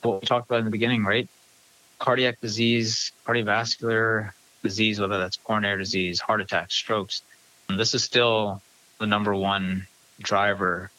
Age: 20-39